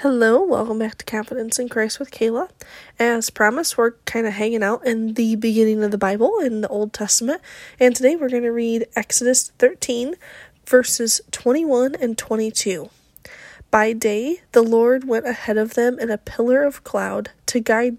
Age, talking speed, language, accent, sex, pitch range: 20-39, 175 wpm, English, American, female, 220-270 Hz